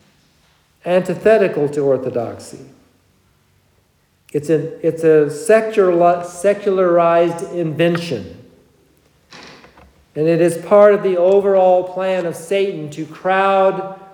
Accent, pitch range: American, 120-190 Hz